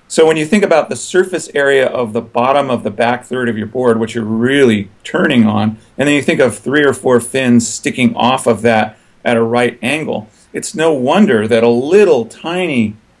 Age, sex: 40-59, male